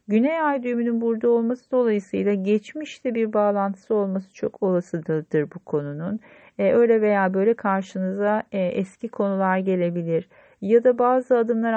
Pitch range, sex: 185-230 Hz, female